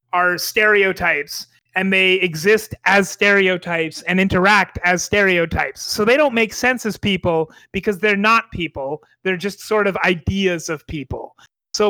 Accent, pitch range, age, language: American, 180-205 Hz, 30-49, English